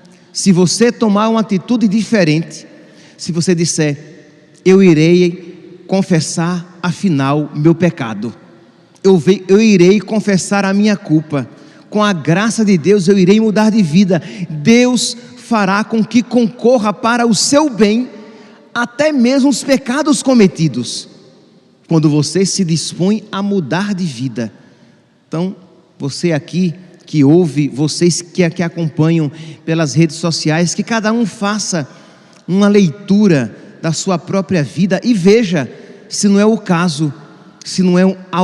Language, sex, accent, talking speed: Portuguese, male, Brazilian, 135 wpm